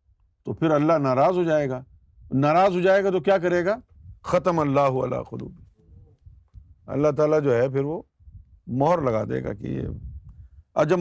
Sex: male